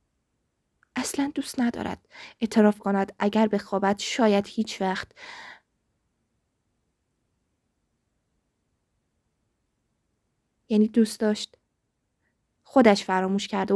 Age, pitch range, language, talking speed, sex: 20-39, 200-265 Hz, Persian, 75 wpm, female